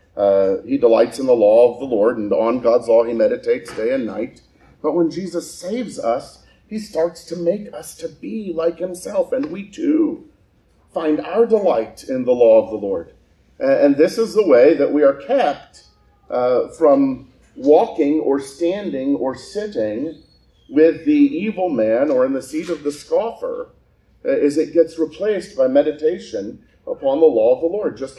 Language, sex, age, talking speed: English, male, 40-59, 180 wpm